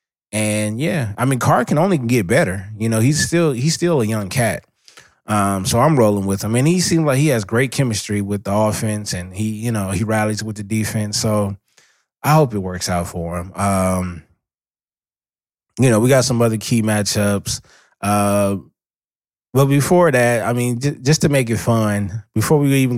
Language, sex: English, male